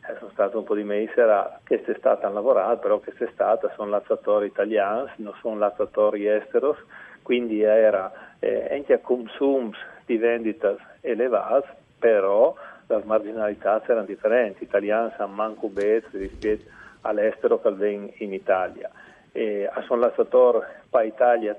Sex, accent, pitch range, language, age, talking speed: male, native, 105-120 Hz, Italian, 40-59, 145 wpm